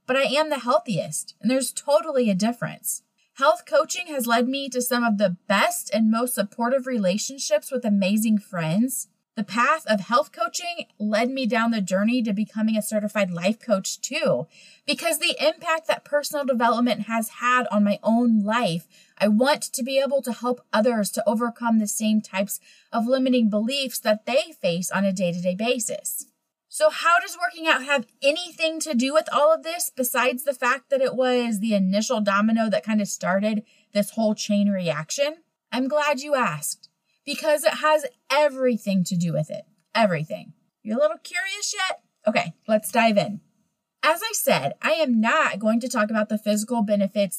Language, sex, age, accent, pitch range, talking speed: English, female, 30-49, American, 205-280 Hz, 180 wpm